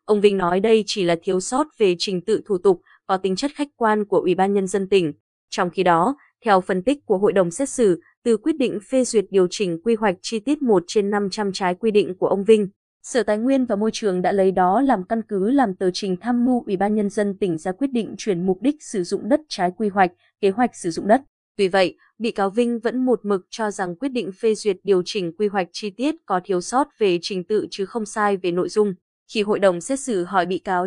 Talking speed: 260 wpm